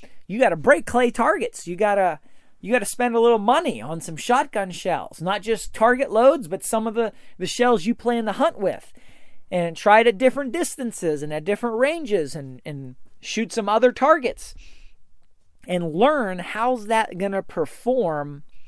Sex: male